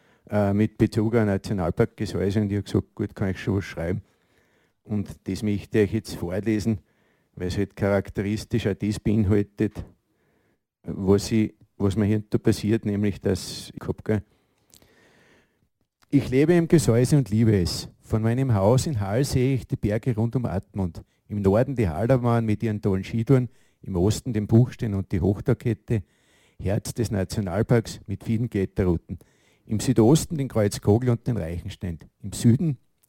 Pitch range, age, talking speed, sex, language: 100-120 Hz, 50-69, 160 wpm, male, German